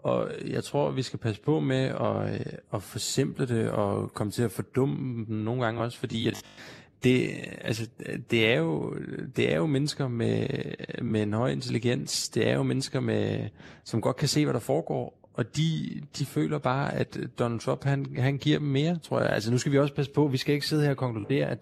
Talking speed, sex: 215 wpm, male